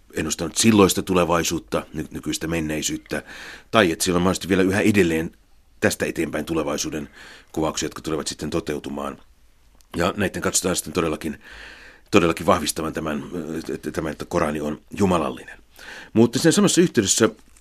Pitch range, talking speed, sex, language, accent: 80-100 Hz, 125 wpm, male, Finnish, native